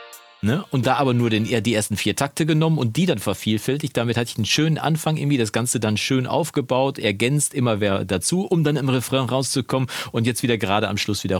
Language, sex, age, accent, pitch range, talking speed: German, male, 40-59, German, 100-145 Hz, 215 wpm